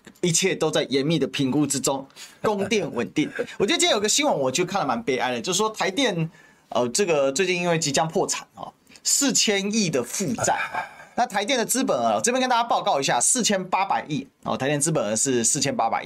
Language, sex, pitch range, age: Chinese, male, 150-220 Hz, 30-49